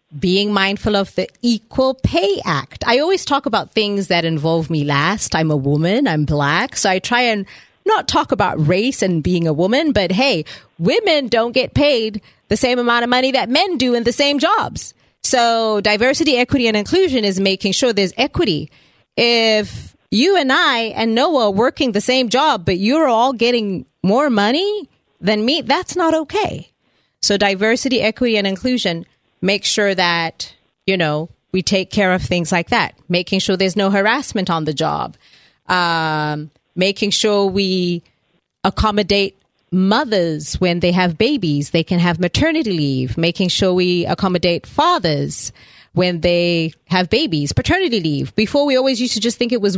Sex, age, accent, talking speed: female, 30-49, American, 170 wpm